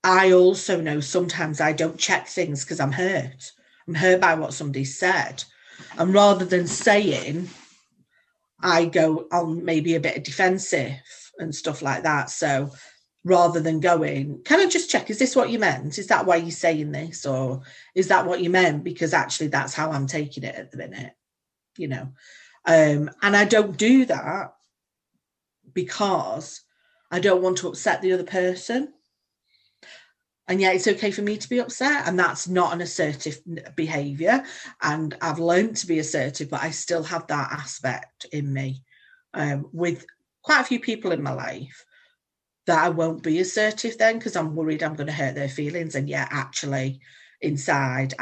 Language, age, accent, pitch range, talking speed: English, 40-59, British, 150-190 Hz, 175 wpm